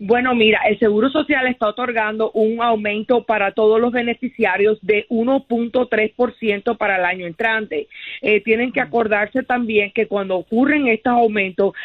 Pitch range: 210-240 Hz